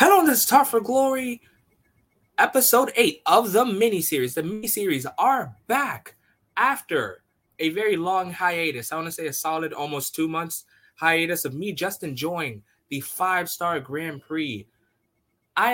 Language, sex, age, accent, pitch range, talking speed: English, male, 20-39, American, 140-205 Hz, 160 wpm